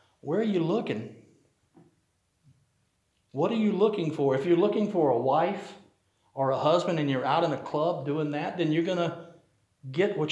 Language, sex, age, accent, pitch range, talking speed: English, male, 50-69, American, 140-175 Hz, 185 wpm